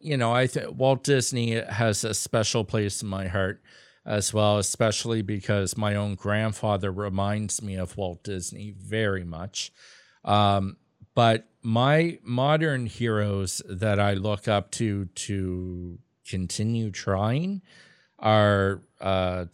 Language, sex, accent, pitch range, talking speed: English, male, American, 100-115 Hz, 130 wpm